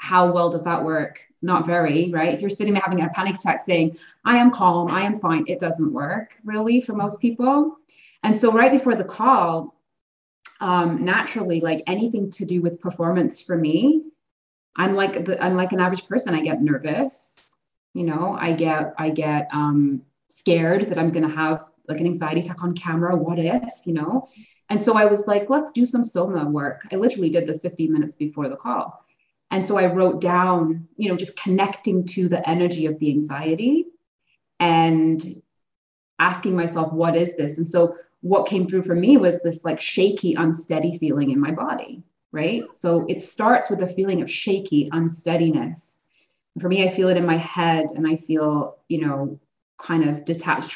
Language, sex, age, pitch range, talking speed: English, female, 30-49, 160-195 Hz, 185 wpm